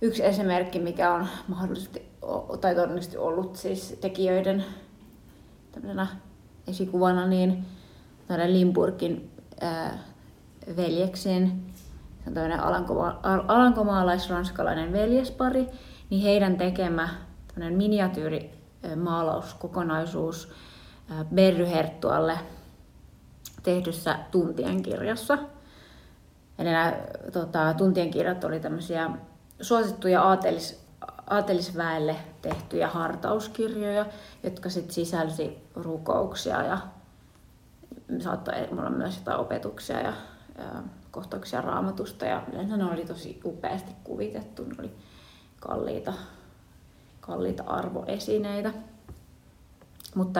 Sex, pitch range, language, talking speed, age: female, 170-195 Hz, Finnish, 75 wpm, 30-49